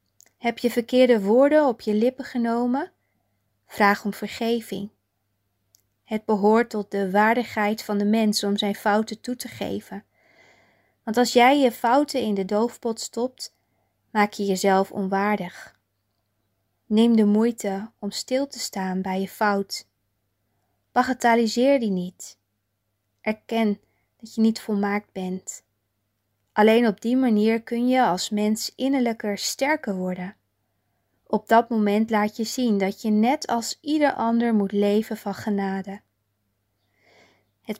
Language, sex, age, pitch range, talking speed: Dutch, female, 20-39, 185-230 Hz, 135 wpm